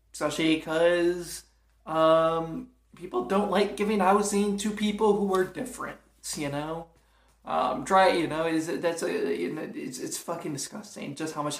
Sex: male